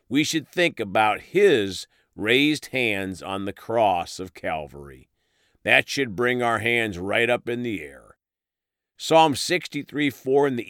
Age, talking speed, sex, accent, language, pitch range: 50-69, 145 wpm, male, American, English, 105-155 Hz